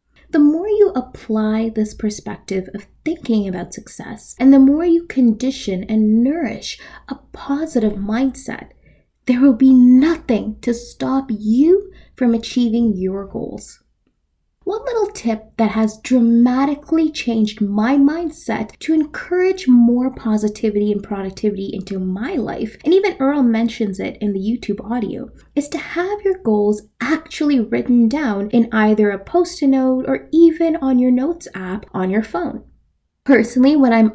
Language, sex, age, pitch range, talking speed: English, female, 20-39, 220-290 Hz, 145 wpm